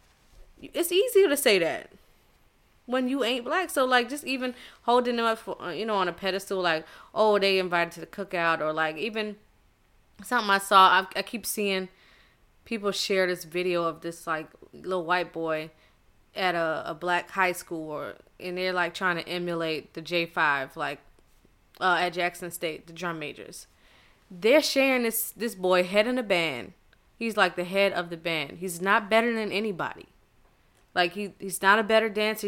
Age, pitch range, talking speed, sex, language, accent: 20-39, 175-220 Hz, 180 wpm, female, English, American